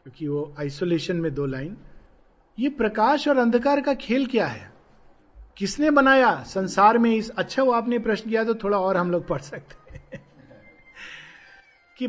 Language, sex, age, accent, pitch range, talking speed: Hindi, male, 50-69, native, 185-255 Hz, 160 wpm